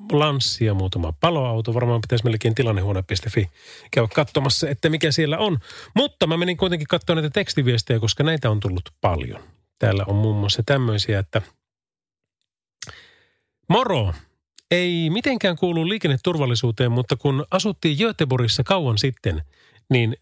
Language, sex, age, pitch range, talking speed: Finnish, male, 30-49, 110-155 Hz, 130 wpm